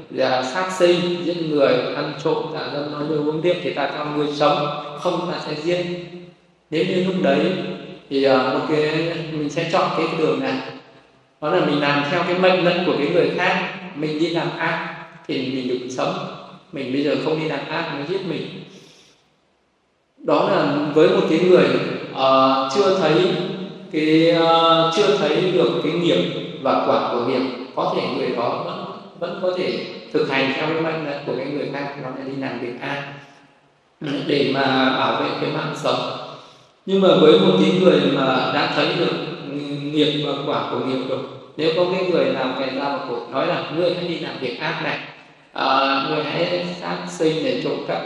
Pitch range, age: 140-175 Hz, 20-39